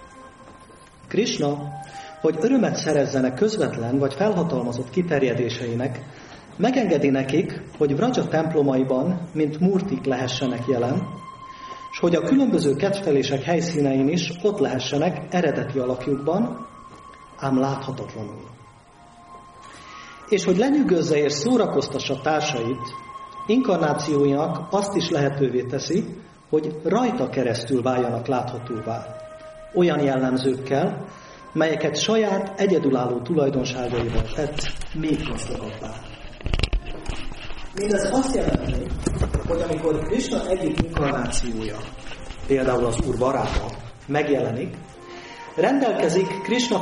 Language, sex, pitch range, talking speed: Hungarian, male, 130-175 Hz, 90 wpm